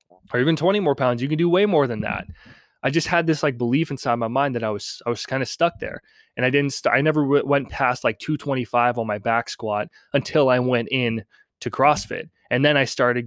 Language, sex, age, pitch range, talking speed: English, male, 20-39, 115-145 Hz, 240 wpm